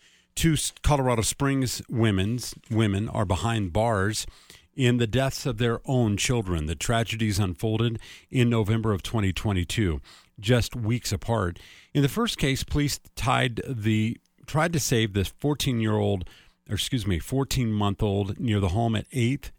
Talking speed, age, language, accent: 140 wpm, 40-59, English, American